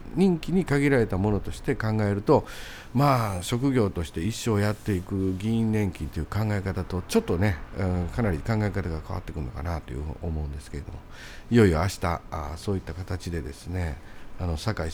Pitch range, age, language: 80-105 Hz, 50-69, Japanese